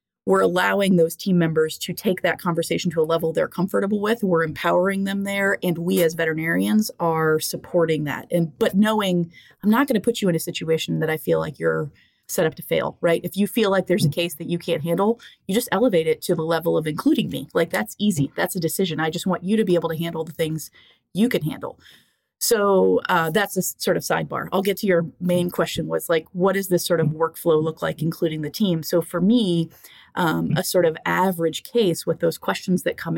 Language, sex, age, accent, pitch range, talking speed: English, female, 30-49, American, 160-185 Hz, 235 wpm